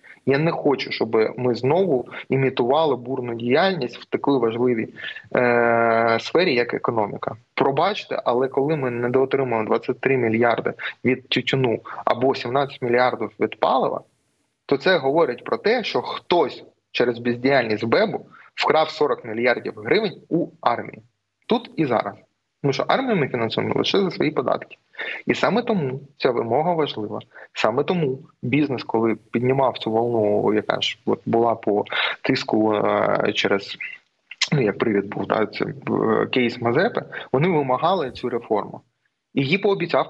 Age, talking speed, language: 20-39, 140 wpm, Ukrainian